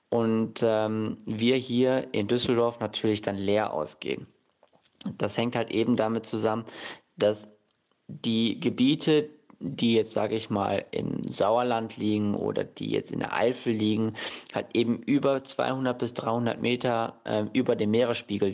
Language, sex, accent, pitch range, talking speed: German, male, German, 105-125 Hz, 145 wpm